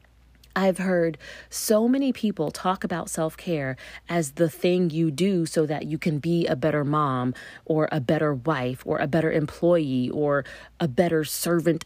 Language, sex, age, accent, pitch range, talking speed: English, female, 40-59, American, 160-220 Hz, 165 wpm